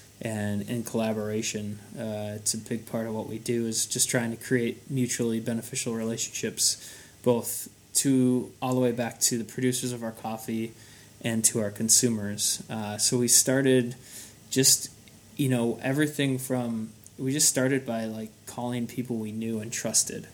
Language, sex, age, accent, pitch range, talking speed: English, male, 20-39, American, 110-125 Hz, 165 wpm